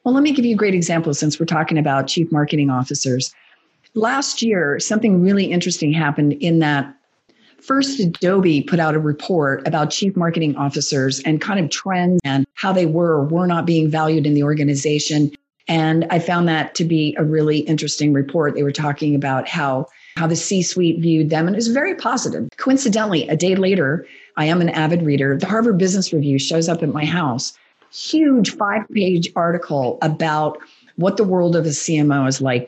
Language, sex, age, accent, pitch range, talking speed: English, female, 40-59, American, 150-195 Hz, 190 wpm